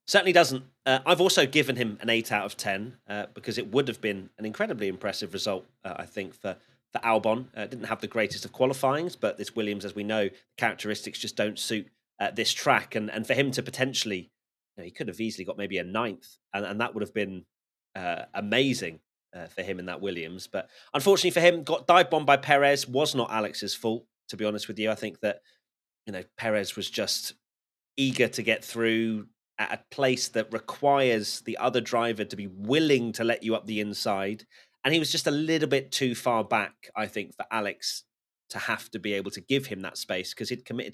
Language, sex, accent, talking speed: English, male, British, 220 wpm